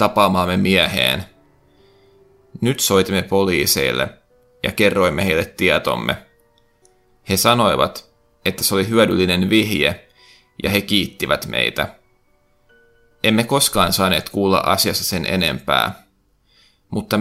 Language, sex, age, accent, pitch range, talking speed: Finnish, male, 30-49, native, 95-115 Hz, 95 wpm